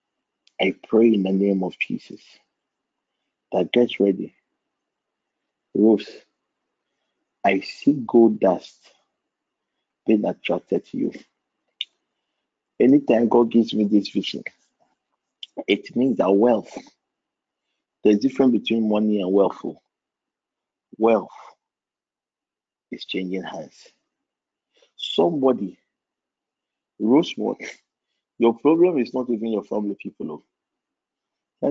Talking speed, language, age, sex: 95 wpm, English, 50-69, male